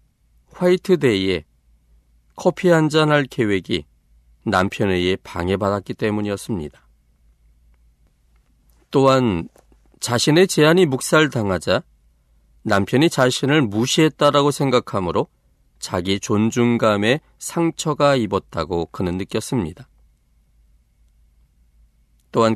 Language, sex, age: Korean, male, 40-59